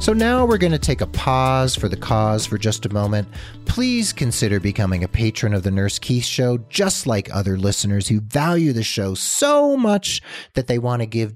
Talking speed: 210 wpm